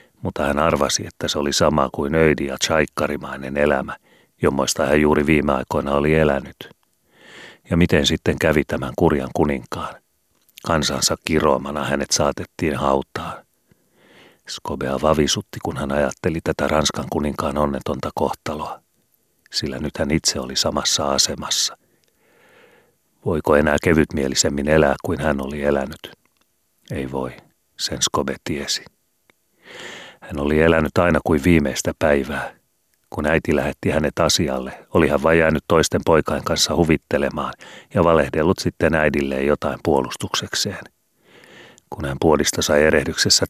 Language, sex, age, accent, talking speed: Finnish, male, 40-59, native, 125 wpm